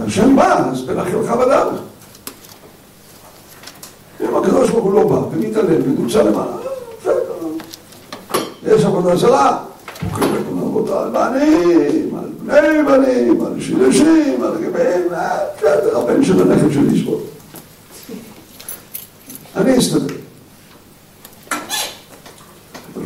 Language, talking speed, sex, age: Hebrew, 95 wpm, male, 60-79